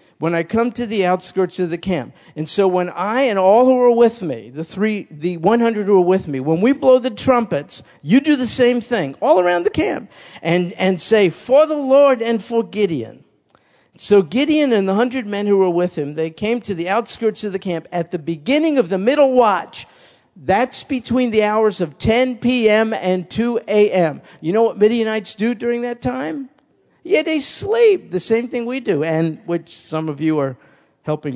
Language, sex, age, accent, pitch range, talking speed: German, male, 50-69, American, 170-245 Hz, 205 wpm